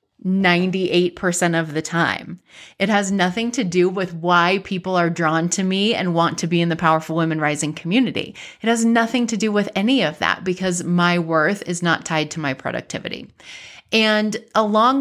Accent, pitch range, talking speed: American, 165-205 Hz, 180 wpm